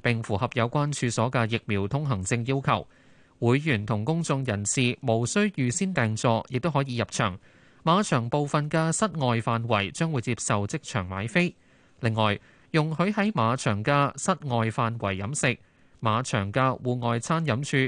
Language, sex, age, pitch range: Chinese, male, 20-39, 110-155 Hz